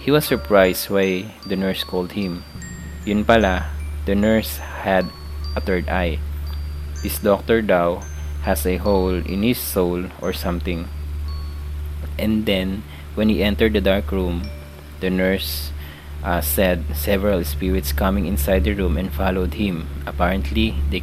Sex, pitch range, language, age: male, 75-100 Hz, English, 20-39